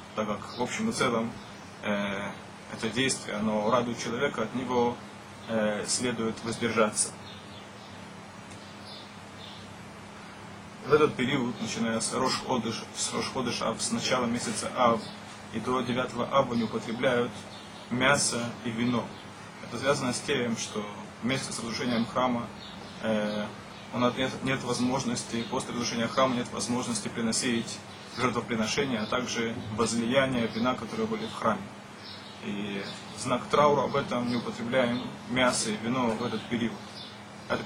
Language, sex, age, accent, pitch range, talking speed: Russian, male, 20-39, native, 110-120 Hz, 130 wpm